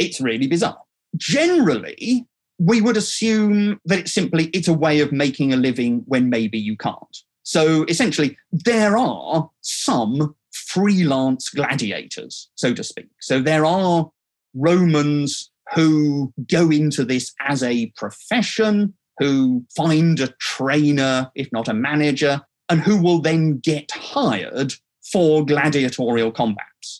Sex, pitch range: male, 120-170 Hz